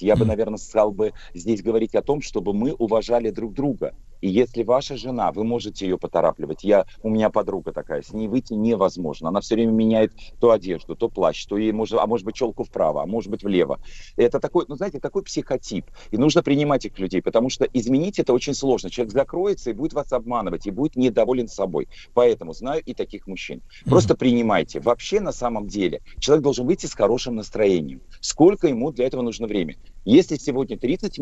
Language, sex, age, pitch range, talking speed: Russian, male, 40-59, 110-130 Hz, 200 wpm